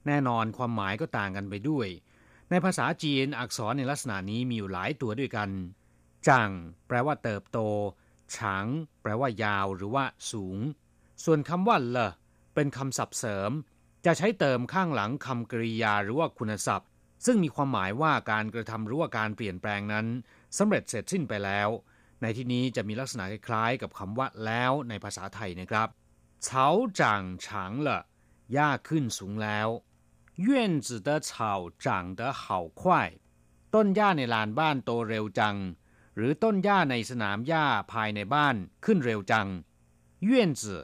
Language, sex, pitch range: Thai, male, 95-140 Hz